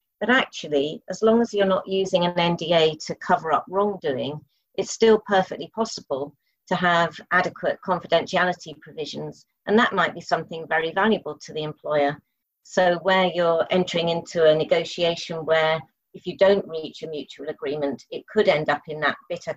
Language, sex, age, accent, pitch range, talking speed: English, female, 40-59, British, 160-190 Hz, 170 wpm